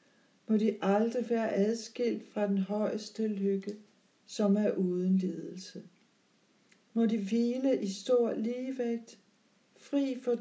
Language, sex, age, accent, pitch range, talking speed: Danish, female, 60-79, native, 185-220 Hz, 120 wpm